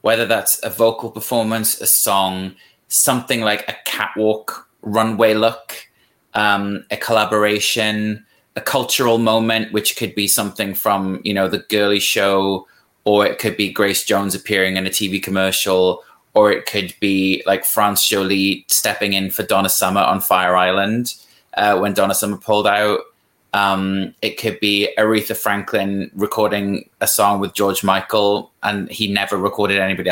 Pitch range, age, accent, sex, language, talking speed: 95-110 Hz, 20-39, British, male, English, 155 wpm